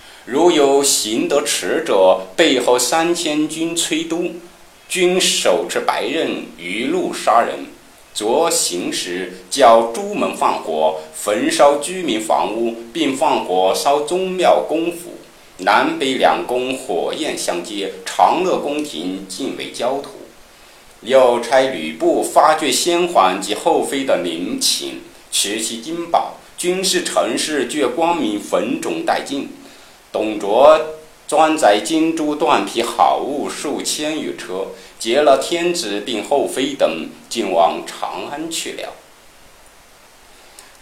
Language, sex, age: Chinese, male, 50-69